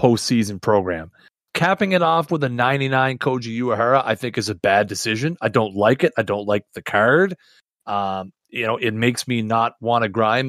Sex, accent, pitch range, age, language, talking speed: male, American, 120-155 Hz, 30-49, English, 200 wpm